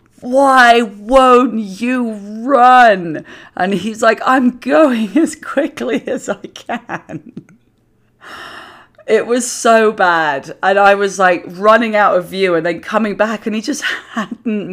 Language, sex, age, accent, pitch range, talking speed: English, female, 30-49, British, 175-235 Hz, 140 wpm